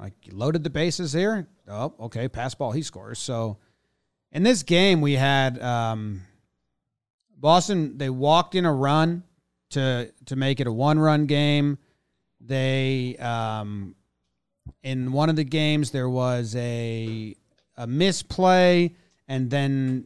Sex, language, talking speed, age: male, English, 140 wpm, 30-49